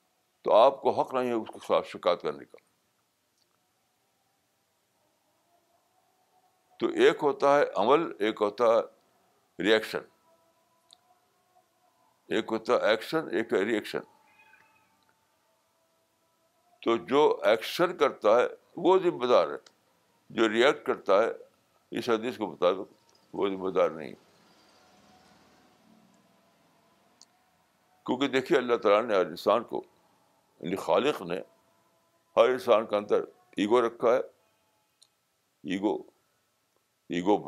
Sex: male